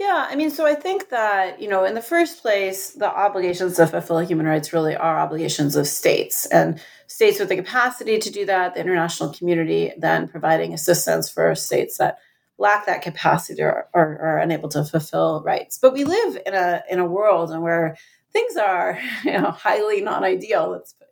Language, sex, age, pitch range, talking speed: English, female, 30-49, 170-245 Hz, 200 wpm